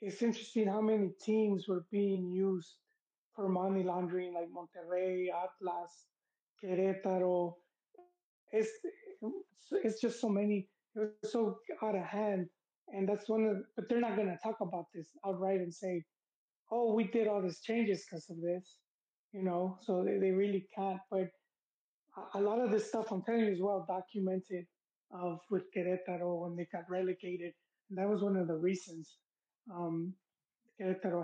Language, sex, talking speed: English, male, 165 wpm